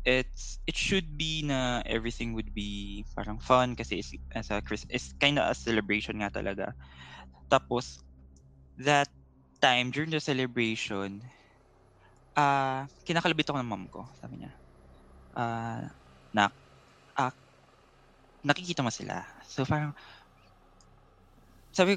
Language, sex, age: Filipino, male, 20-39